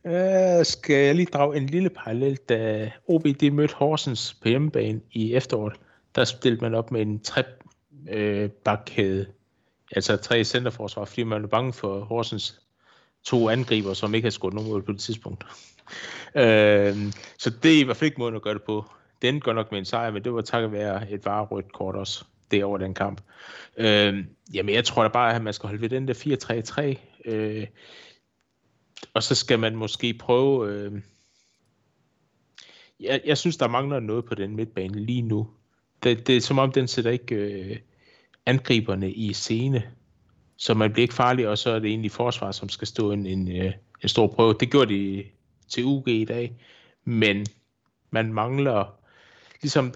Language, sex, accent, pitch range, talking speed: Danish, male, native, 105-125 Hz, 185 wpm